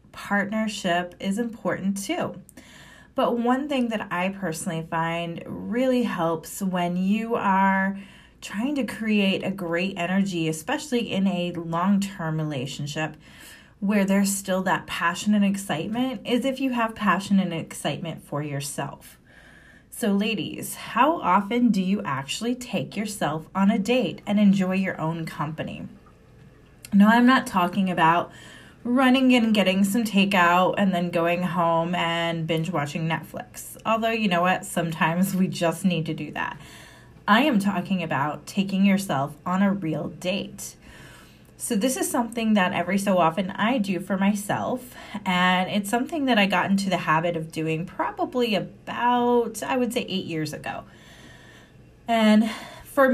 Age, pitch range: 20-39, 170-225 Hz